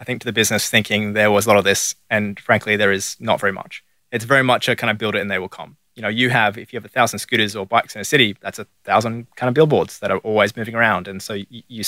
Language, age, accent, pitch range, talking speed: English, 20-39, Australian, 100-120 Hz, 310 wpm